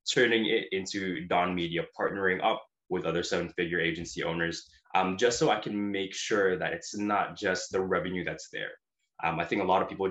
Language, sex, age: English, male, 20-39